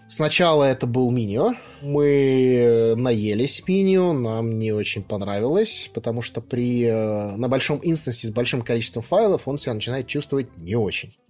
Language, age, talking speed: Russian, 20-39, 145 wpm